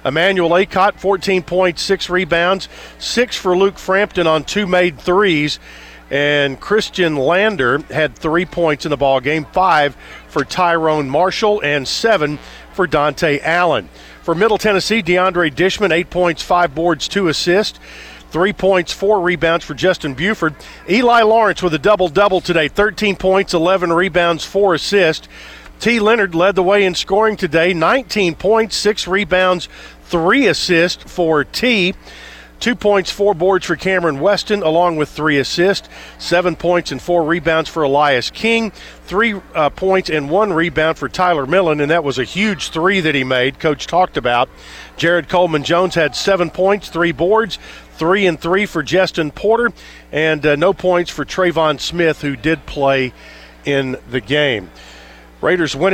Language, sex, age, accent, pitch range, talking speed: English, male, 50-69, American, 155-195 Hz, 155 wpm